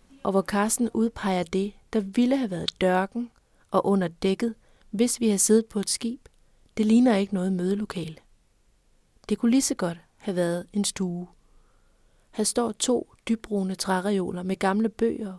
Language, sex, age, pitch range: Danish, female, 30-49, 185-225 Hz